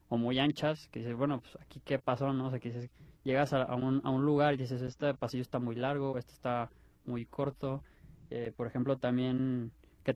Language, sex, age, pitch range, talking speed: Spanish, male, 20-39, 115-135 Hz, 225 wpm